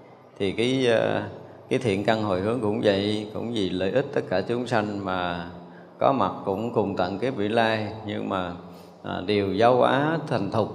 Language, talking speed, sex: Vietnamese, 185 wpm, male